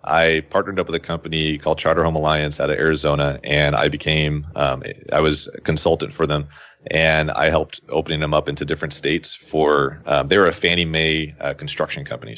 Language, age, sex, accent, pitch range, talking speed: English, 30-49, male, American, 75-85 Hz, 200 wpm